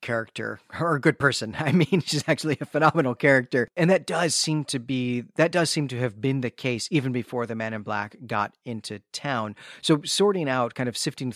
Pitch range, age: 120-150 Hz, 30-49